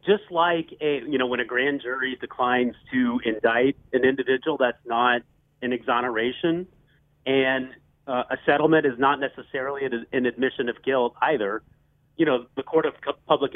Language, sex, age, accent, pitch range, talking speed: English, male, 40-59, American, 125-155 Hz, 160 wpm